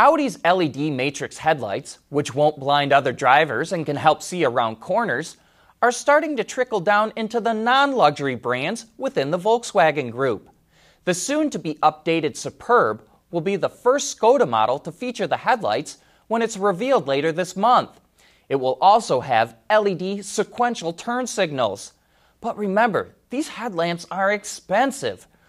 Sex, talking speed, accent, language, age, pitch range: male, 145 wpm, American, English, 20-39, 140-230 Hz